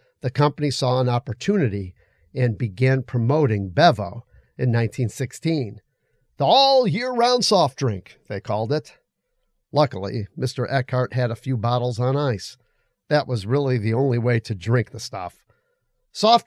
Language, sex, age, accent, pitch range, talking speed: English, male, 50-69, American, 120-150 Hz, 140 wpm